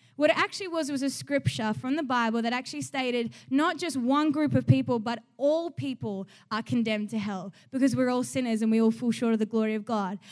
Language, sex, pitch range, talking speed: English, female, 225-285 Hz, 235 wpm